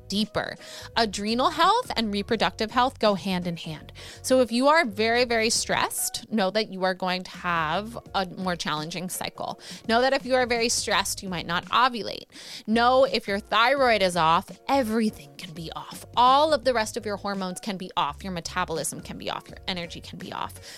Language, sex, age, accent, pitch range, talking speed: English, female, 20-39, American, 185-245 Hz, 200 wpm